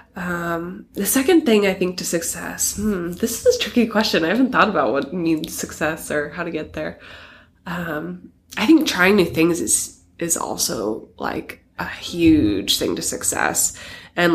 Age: 20-39